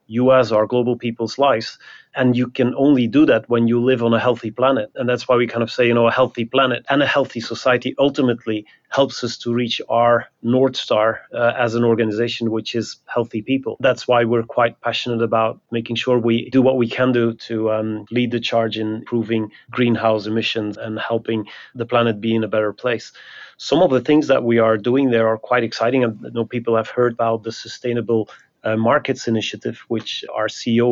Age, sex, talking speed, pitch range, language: 30-49, male, 210 wpm, 115-125 Hz, English